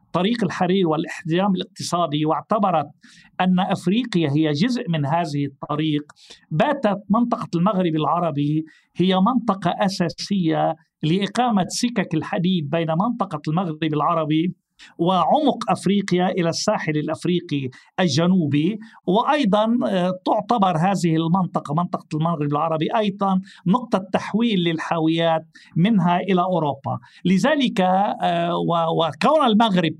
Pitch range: 160-200 Hz